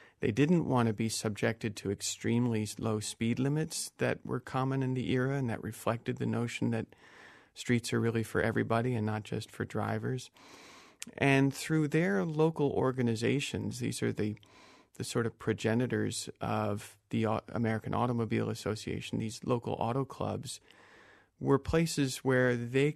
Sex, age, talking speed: male, 40-59, 150 wpm